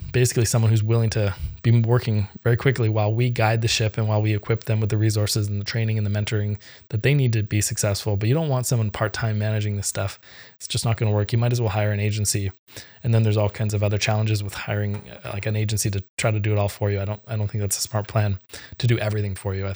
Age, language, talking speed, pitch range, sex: 20-39, English, 280 wpm, 105-115 Hz, male